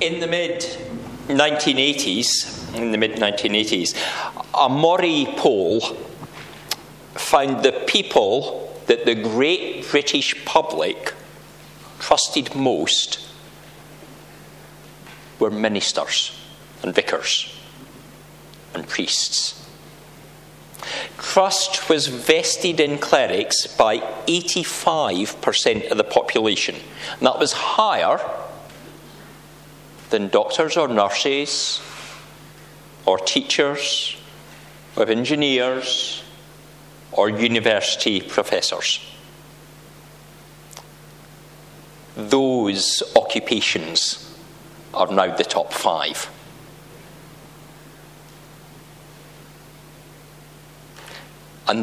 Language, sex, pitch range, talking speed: English, male, 140-165 Hz, 70 wpm